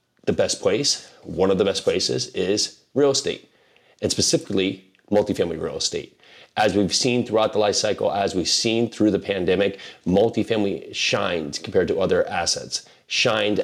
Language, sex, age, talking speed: English, male, 30-49, 160 wpm